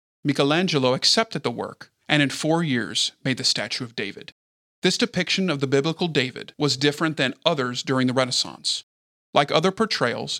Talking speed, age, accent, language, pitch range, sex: 165 wpm, 40-59, American, English, 130-155 Hz, male